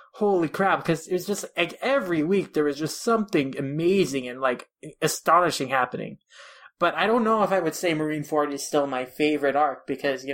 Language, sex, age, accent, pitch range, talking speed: English, male, 20-39, American, 140-170 Hz, 195 wpm